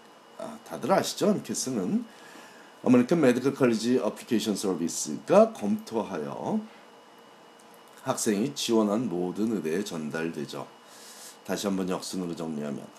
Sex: male